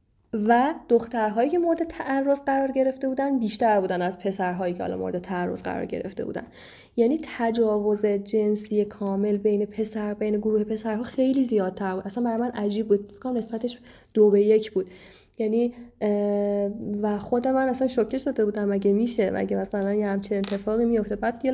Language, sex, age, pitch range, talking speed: Persian, female, 20-39, 200-235 Hz, 165 wpm